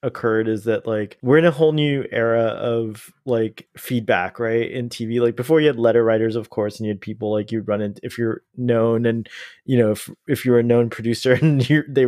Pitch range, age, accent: 115-140 Hz, 20-39, American